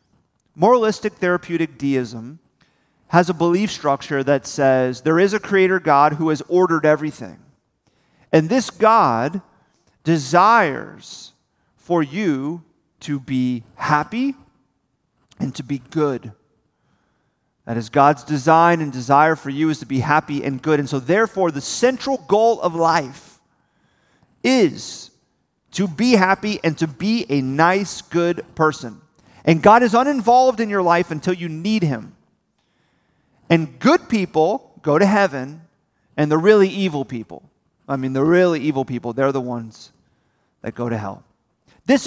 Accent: American